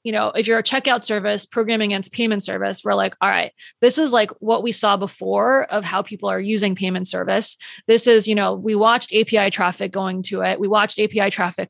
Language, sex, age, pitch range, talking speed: English, female, 20-39, 195-230 Hz, 225 wpm